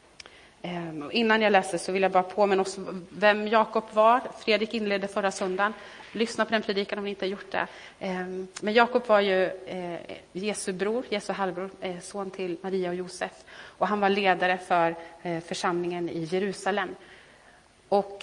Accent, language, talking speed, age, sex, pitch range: native, Swedish, 160 wpm, 30-49, female, 180-210 Hz